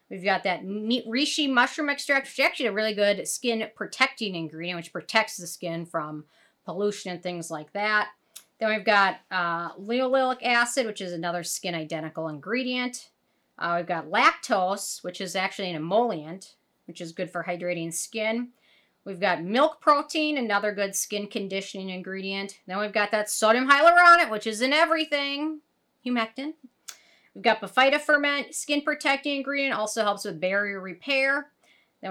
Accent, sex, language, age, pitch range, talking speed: American, female, English, 40-59, 185-265 Hz, 155 wpm